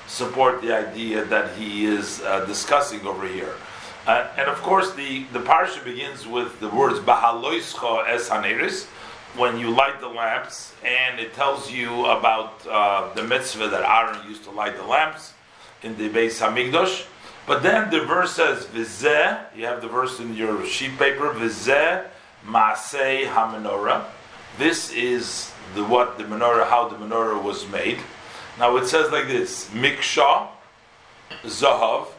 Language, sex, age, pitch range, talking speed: English, male, 40-59, 115-145 Hz, 155 wpm